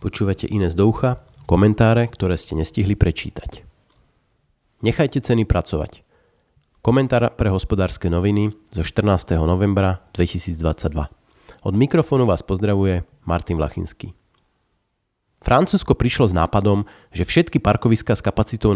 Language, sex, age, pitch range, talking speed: Slovak, male, 40-59, 95-115 Hz, 110 wpm